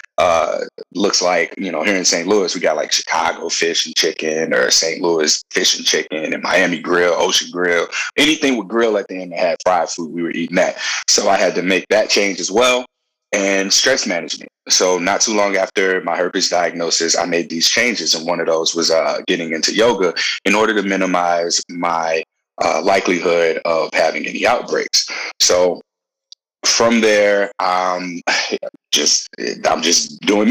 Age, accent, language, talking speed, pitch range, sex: 30-49, American, English, 185 wpm, 85-125 Hz, male